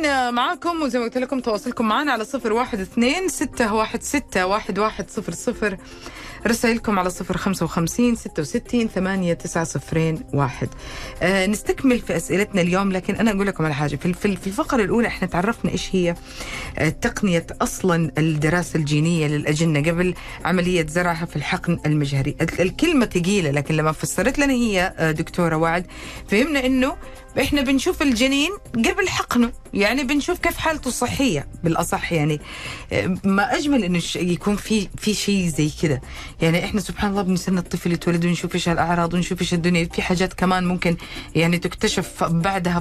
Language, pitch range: Arabic, 165-230 Hz